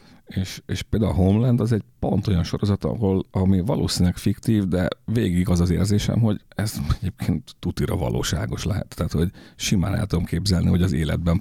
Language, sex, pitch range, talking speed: English, male, 85-100 Hz, 180 wpm